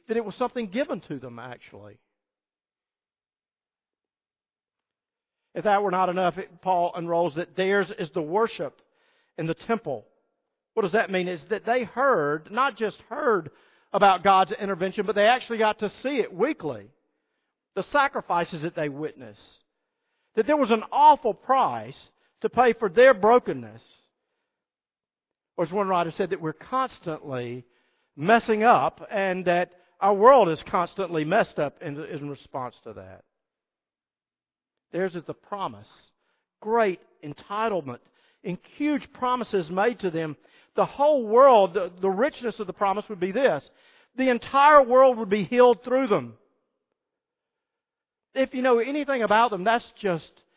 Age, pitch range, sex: 50-69, 170-255 Hz, male